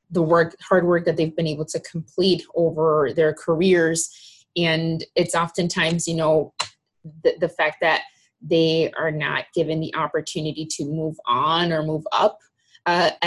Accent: American